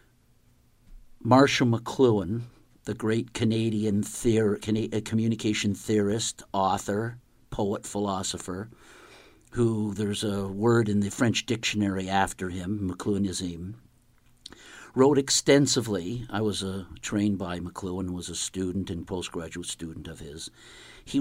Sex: male